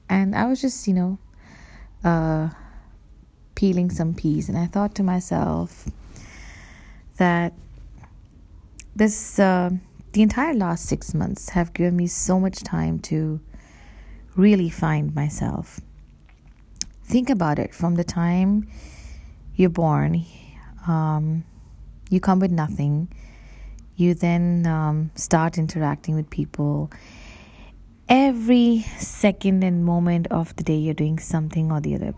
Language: English